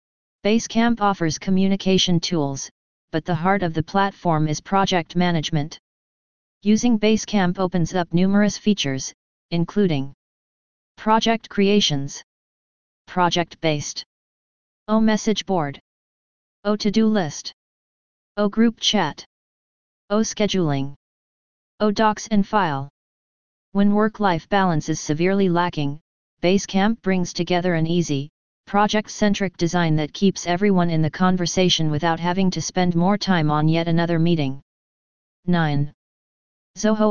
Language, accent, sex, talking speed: English, American, female, 115 wpm